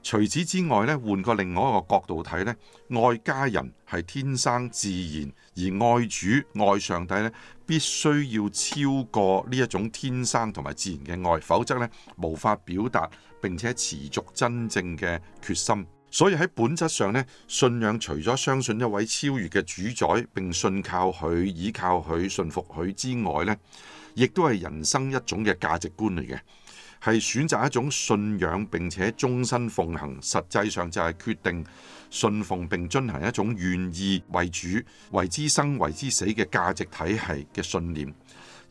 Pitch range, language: 85-120 Hz, Chinese